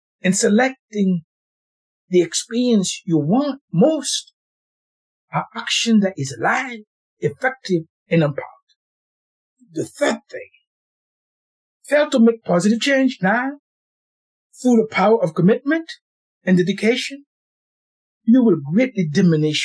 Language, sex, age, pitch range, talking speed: English, male, 60-79, 150-245 Hz, 105 wpm